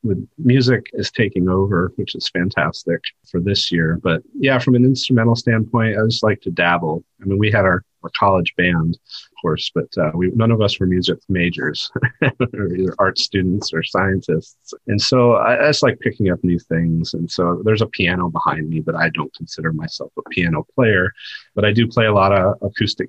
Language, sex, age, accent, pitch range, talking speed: English, male, 30-49, American, 85-105 Hz, 200 wpm